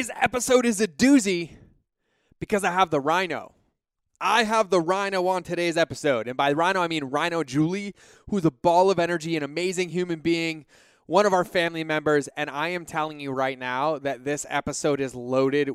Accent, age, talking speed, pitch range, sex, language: American, 20-39, 185 wpm, 145-185 Hz, male, English